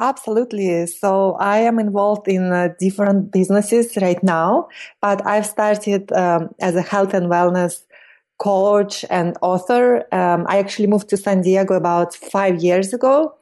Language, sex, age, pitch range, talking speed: English, female, 30-49, 185-220 Hz, 150 wpm